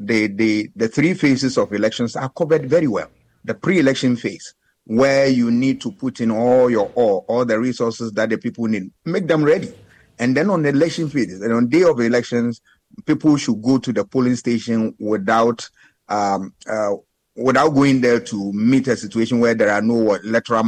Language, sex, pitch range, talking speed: English, male, 110-130 Hz, 195 wpm